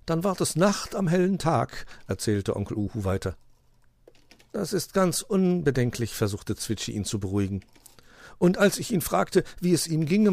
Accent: German